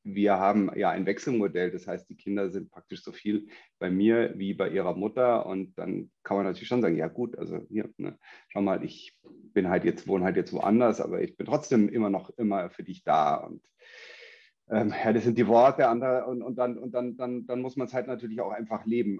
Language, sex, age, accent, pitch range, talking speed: German, male, 30-49, German, 100-120 Hz, 205 wpm